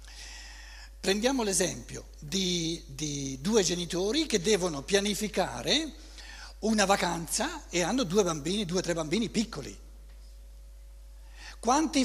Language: Italian